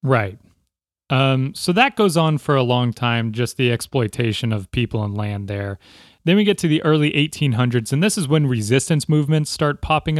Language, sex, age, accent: English, male, 30-49, American